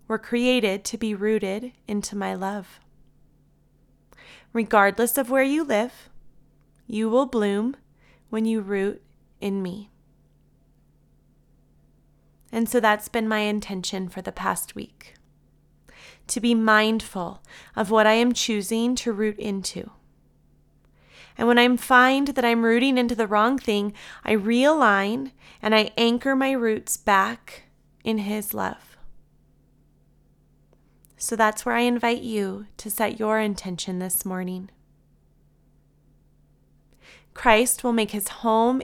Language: English